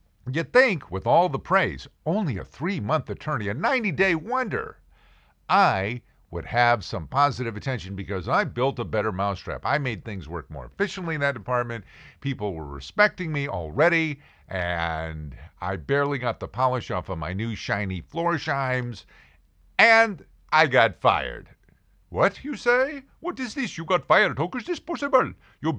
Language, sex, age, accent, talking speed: English, male, 50-69, American, 165 wpm